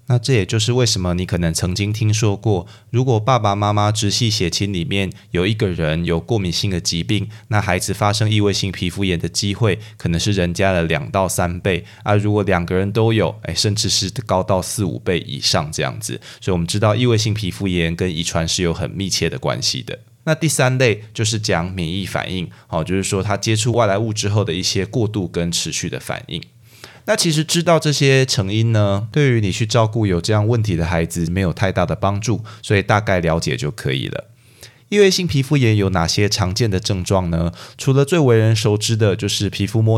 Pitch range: 95-115 Hz